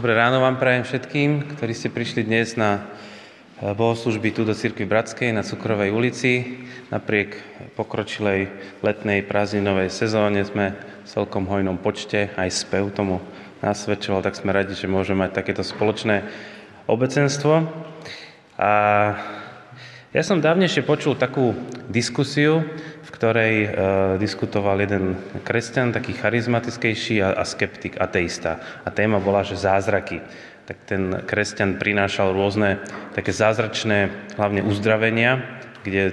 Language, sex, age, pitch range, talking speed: Slovak, male, 20-39, 95-115 Hz, 125 wpm